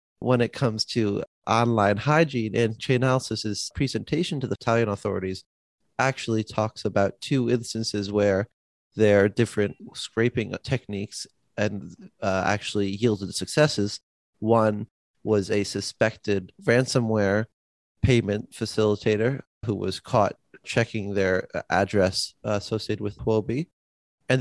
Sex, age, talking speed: male, 30-49, 110 wpm